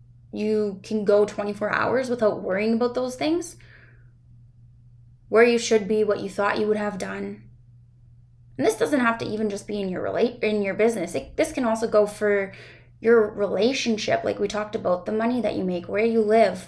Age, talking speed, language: 10-29, 200 wpm, English